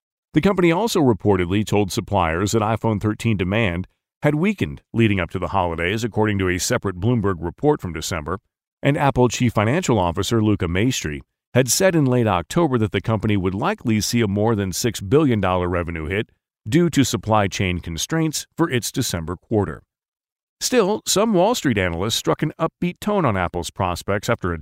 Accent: American